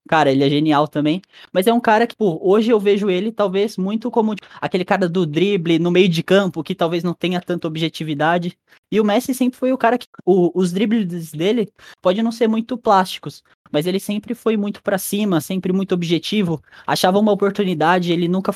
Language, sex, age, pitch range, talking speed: Portuguese, male, 10-29, 160-225 Hz, 200 wpm